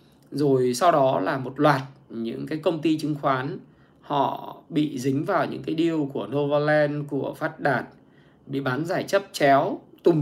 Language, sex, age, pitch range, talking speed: Vietnamese, male, 20-39, 140-185 Hz, 175 wpm